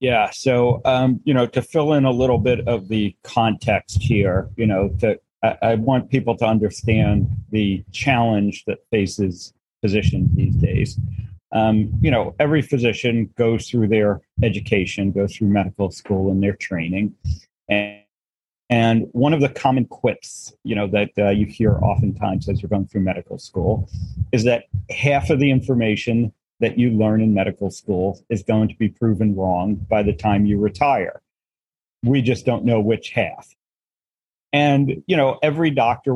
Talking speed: 165 wpm